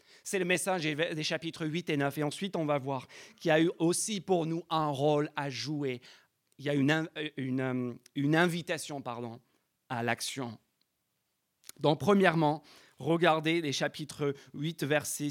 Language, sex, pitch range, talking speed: French, male, 145-175 Hz, 165 wpm